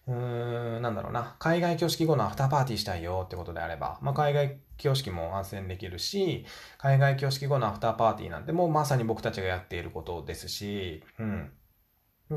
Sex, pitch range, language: male, 100-150 Hz, Japanese